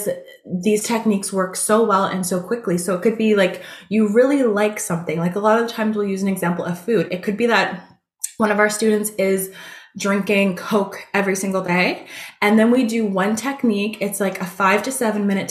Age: 20-39